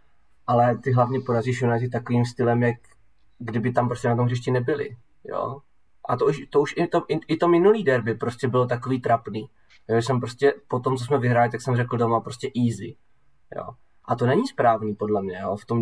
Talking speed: 205 wpm